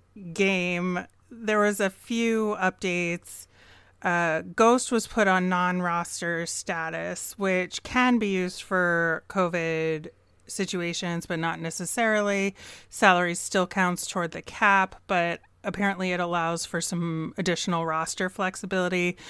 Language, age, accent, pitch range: English, 30-49, American, 165-200 Hz